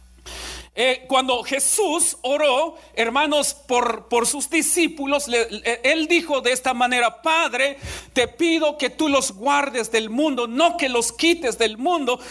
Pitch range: 235-295 Hz